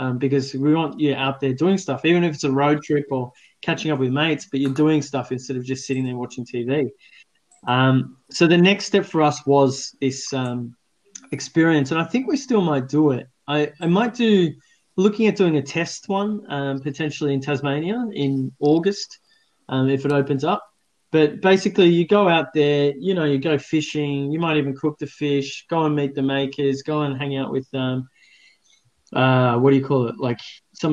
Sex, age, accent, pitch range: male, 20-39, Australian, 135-155 Hz